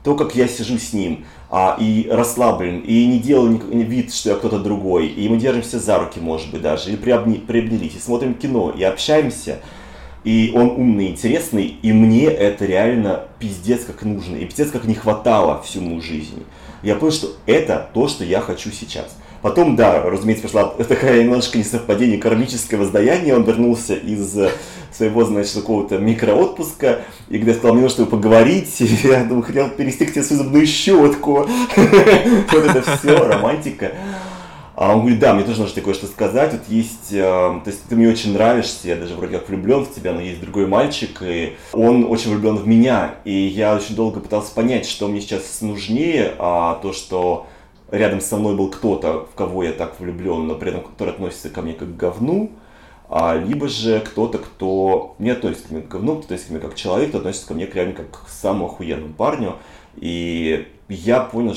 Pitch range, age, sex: 95-120 Hz, 30-49, male